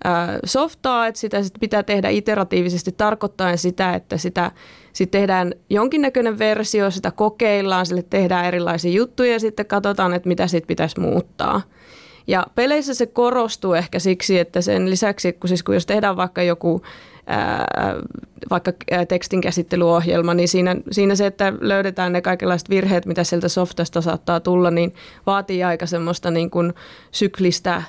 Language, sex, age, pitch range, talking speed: Finnish, female, 30-49, 175-200 Hz, 145 wpm